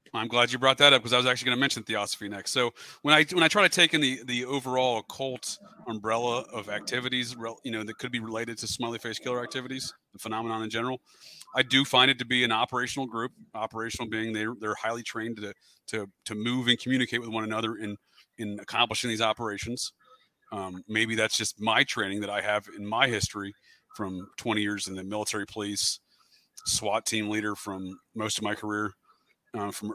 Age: 30-49